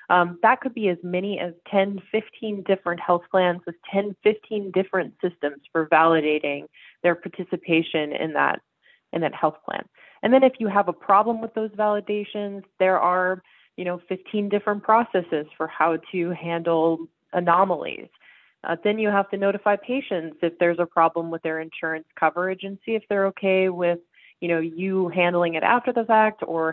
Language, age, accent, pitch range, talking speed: English, 20-39, American, 170-210 Hz, 175 wpm